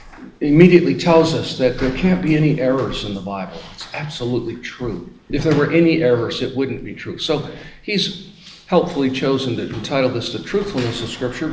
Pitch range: 125-160 Hz